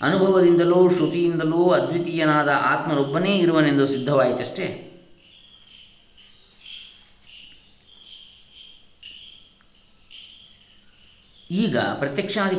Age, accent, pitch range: 20-39, native, 125-160 Hz